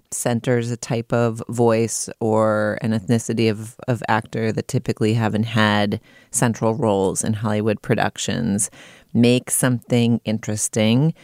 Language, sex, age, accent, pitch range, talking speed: English, female, 30-49, American, 115-185 Hz, 125 wpm